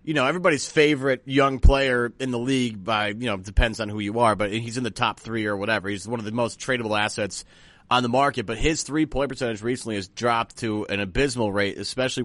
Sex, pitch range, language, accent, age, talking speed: male, 115-155 Hz, English, American, 30-49, 235 wpm